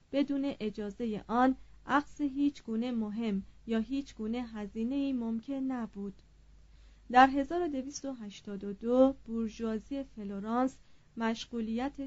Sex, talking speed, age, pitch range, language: female, 90 wpm, 30-49, 215-270 Hz, Persian